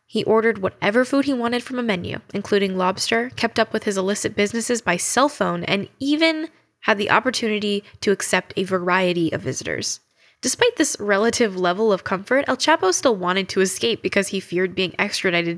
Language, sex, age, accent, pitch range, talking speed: English, female, 10-29, American, 190-230 Hz, 185 wpm